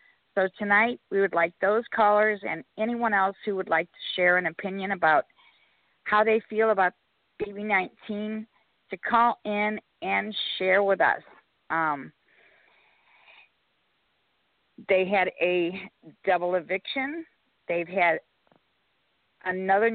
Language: English